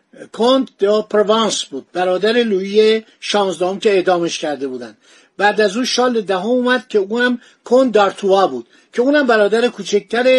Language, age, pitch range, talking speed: Persian, 50-69, 190-235 Hz, 155 wpm